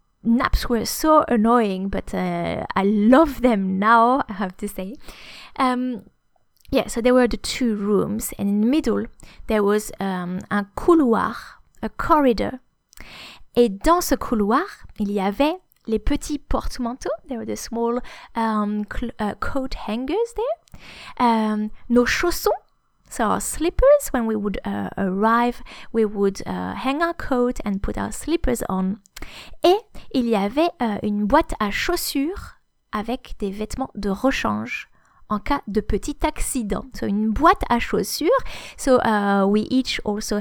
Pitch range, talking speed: 210-275 Hz, 150 wpm